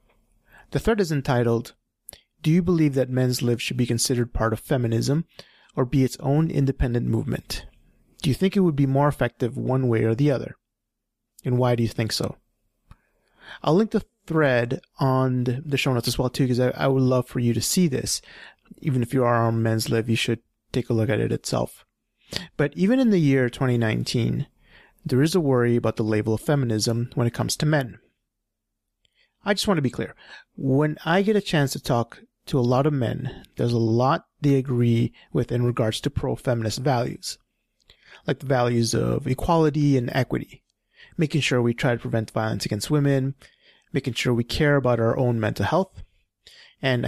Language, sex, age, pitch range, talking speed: English, male, 30-49, 115-145 Hz, 195 wpm